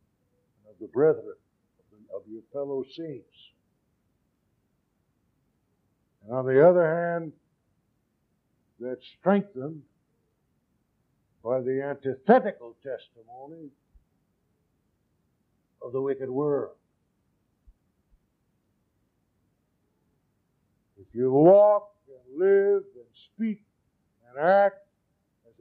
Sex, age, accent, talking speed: male, 60-79, American, 75 wpm